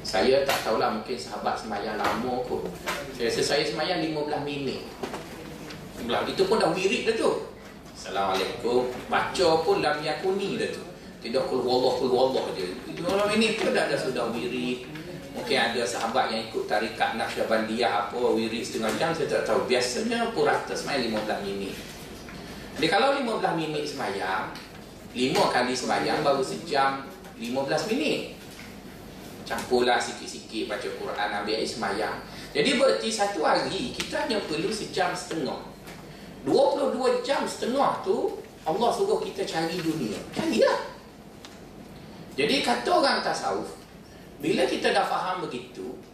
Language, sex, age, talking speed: Malay, male, 30-49, 135 wpm